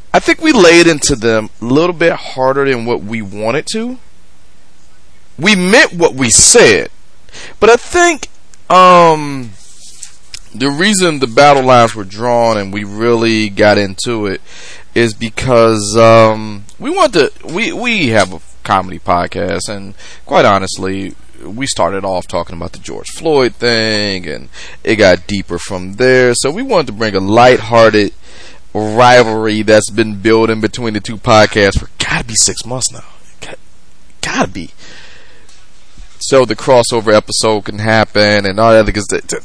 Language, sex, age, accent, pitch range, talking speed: English, male, 30-49, American, 95-130 Hz, 150 wpm